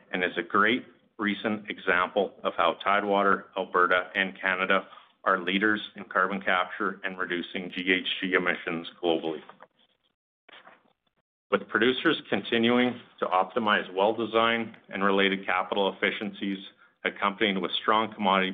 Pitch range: 95-105 Hz